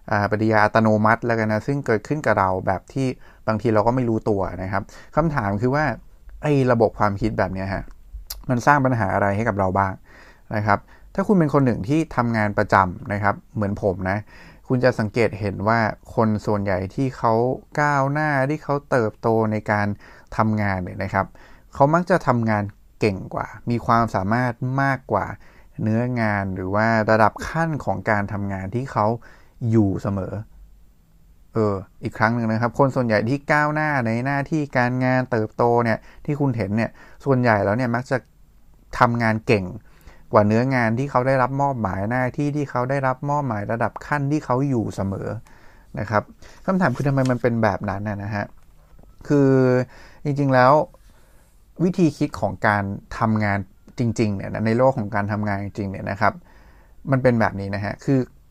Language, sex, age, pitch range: English, male, 20-39, 100-130 Hz